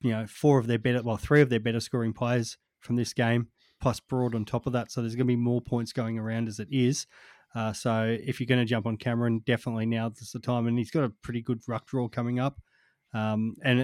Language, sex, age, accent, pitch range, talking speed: English, male, 20-39, Australian, 115-125 Hz, 260 wpm